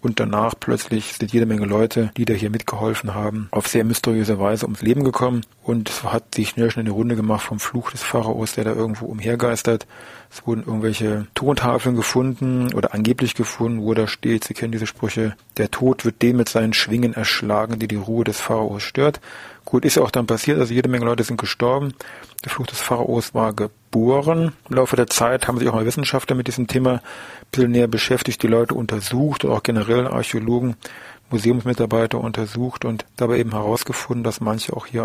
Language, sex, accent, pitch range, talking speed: German, male, German, 110-125 Hz, 200 wpm